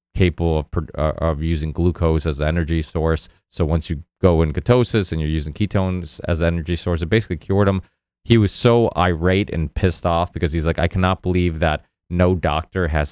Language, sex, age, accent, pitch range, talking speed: English, male, 30-49, American, 80-95 Hz, 200 wpm